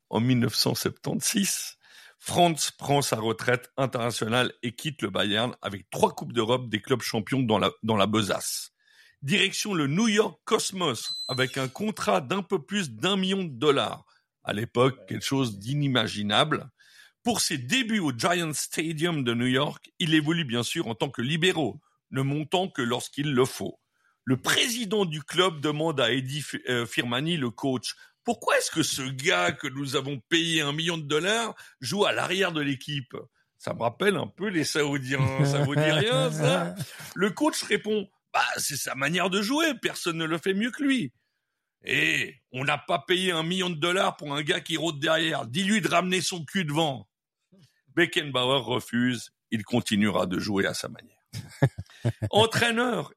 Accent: French